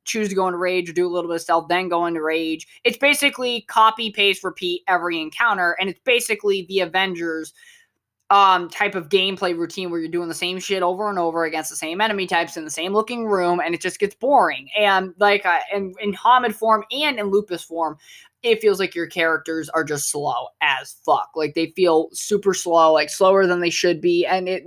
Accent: American